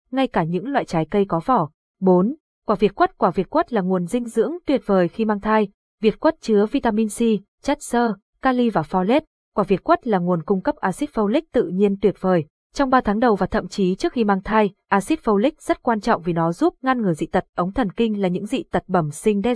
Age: 20-39